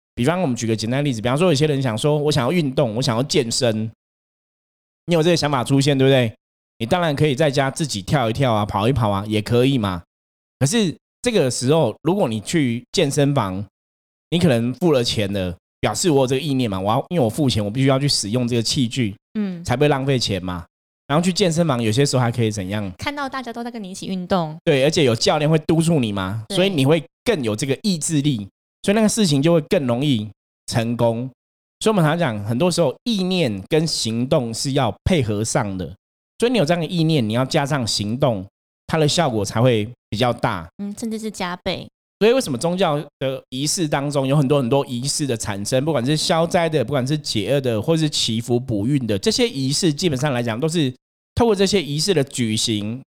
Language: Chinese